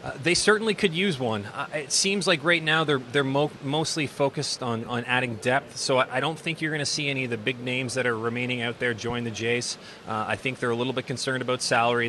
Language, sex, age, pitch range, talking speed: English, male, 30-49, 115-135 Hz, 265 wpm